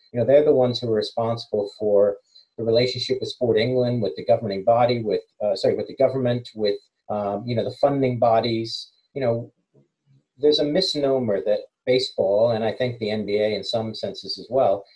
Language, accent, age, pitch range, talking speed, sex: English, American, 40-59, 105-130 Hz, 195 wpm, male